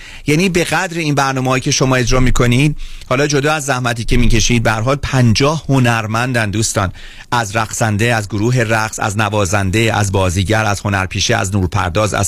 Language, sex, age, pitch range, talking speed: Persian, male, 30-49, 110-140 Hz, 165 wpm